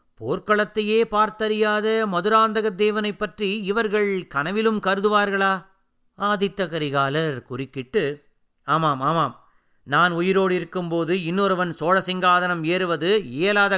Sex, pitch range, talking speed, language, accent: male, 150-190 Hz, 85 wpm, Tamil, native